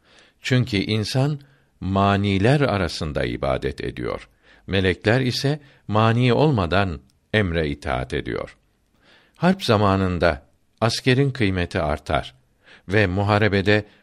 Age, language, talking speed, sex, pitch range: 60-79, Turkish, 85 wpm, male, 95-120 Hz